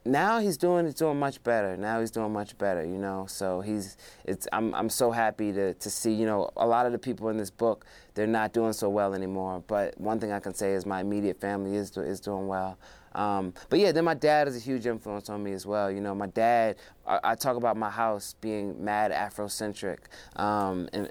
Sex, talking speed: male, 235 wpm